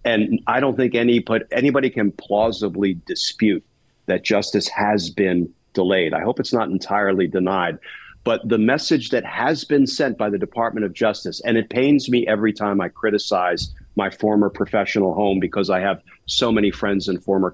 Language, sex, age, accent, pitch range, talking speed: English, male, 50-69, American, 100-120 Hz, 180 wpm